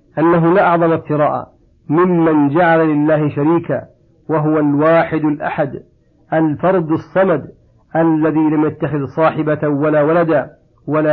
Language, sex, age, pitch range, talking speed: Arabic, male, 50-69, 150-170 Hz, 110 wpm